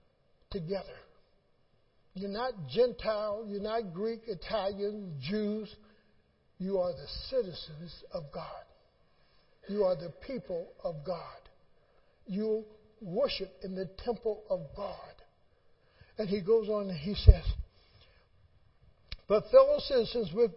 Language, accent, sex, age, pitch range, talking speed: English, American, male, 60-79, 205-275 Hz, 115 wpm